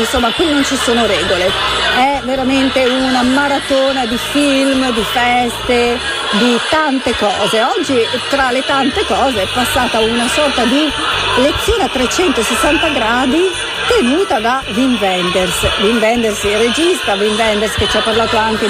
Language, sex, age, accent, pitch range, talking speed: Italian, female, 50-69, native, 220-280 Hz, 150 wpm